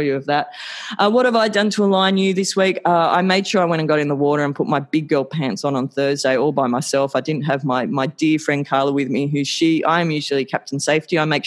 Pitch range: 140-175 Hz